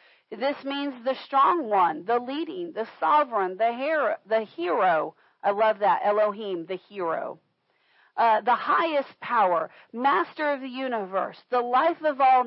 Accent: American